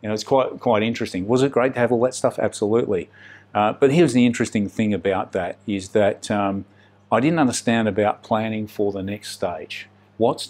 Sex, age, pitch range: male, 50-69, 105-125 Hz